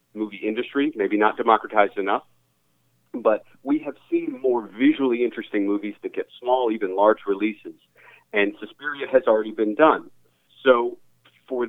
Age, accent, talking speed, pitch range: 40-59, American, 145 wpm, 95-120 Hz